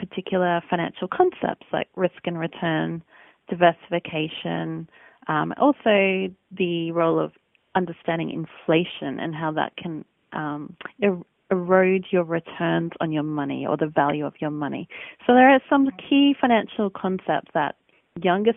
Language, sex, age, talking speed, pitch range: English, female, 30-49, 135 wpm, 165-215 Hz